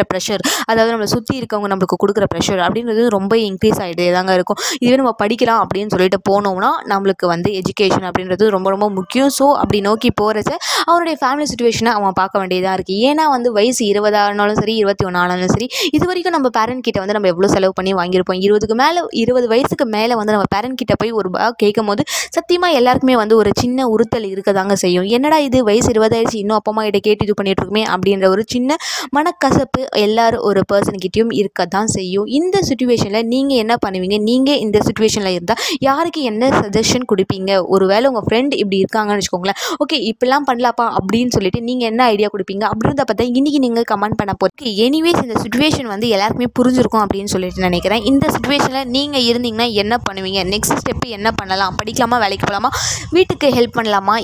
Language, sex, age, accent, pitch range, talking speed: Tamil, female, 20-39, native, 200-245 Hz, 90 wpm